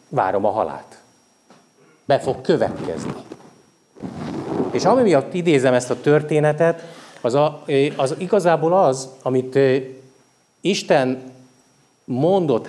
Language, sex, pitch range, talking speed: Hungarian, male, 130-155 Hz, 95 wpm